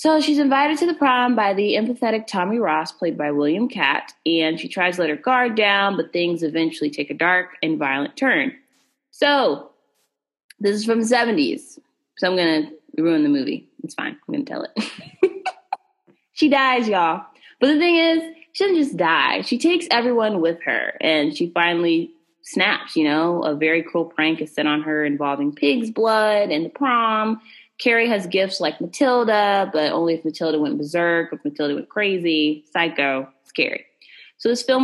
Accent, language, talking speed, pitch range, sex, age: American, English, 185 wpm, 160-260 Hz, female, 20-39